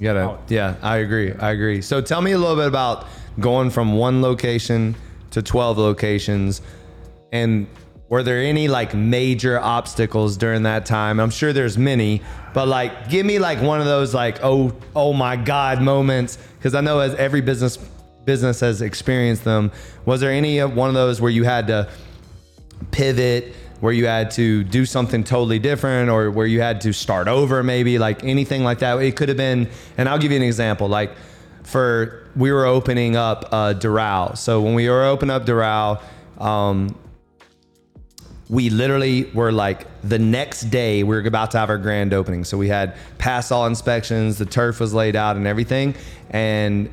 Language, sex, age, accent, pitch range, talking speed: English, male, 20-39, American, 105-125 Hz, 185 wpm